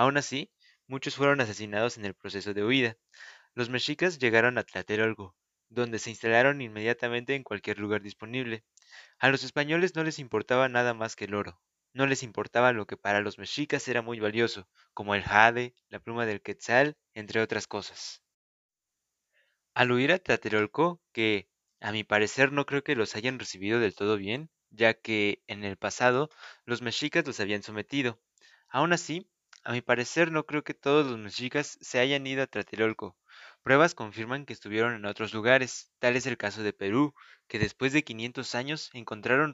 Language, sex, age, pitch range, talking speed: Spanish, male, 20-39, 105-135 Hz, 180 wpm